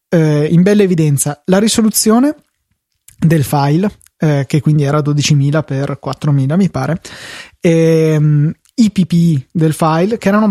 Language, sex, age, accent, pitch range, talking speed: Italian, male, 20-39, native, 155-195 Hz, 130 wpm